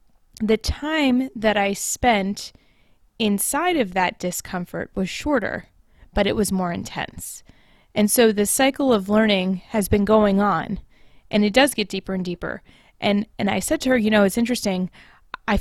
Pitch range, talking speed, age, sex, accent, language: 185-215 Hz, 170 wpm, 20-39, female, American, English